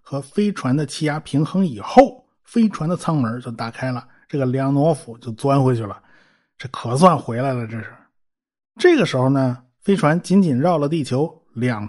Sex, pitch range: male, 125-195 Hz